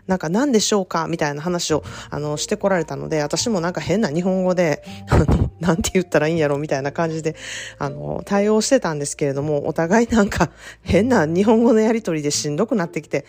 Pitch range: 150-200 Hz